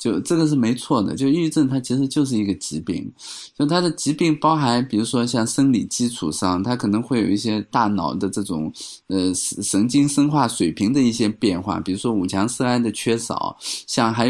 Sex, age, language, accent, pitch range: male, 20-39, Chinese, native, 105-140 Hz